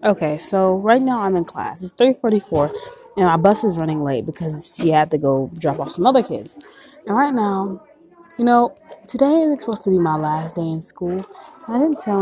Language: English